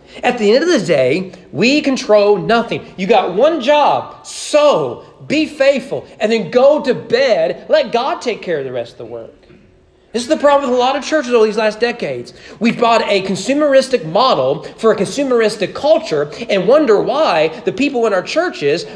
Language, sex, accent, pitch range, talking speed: English, male, American, 165-275 Hz, 195 wpm